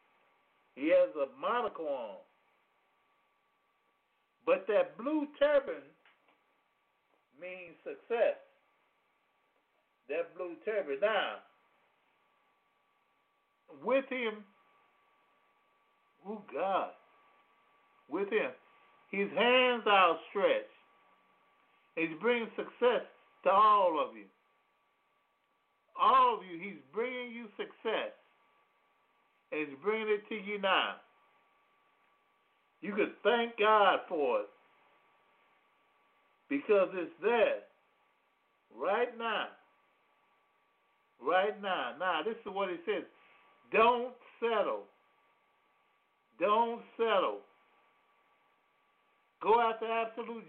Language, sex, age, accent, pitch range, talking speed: English, male, 50-69, American, 210-285 Hz, 85 wpm